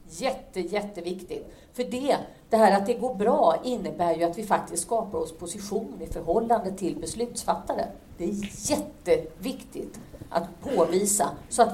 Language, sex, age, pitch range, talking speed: English, female, 50-69, 170-235 Hz, 150 wpm